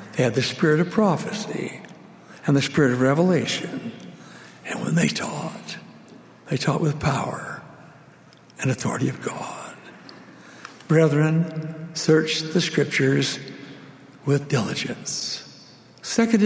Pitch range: 140-205 Hz